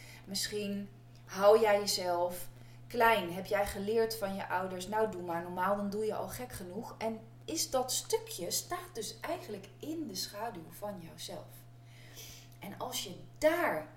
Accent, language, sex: Dutch, Dutch, female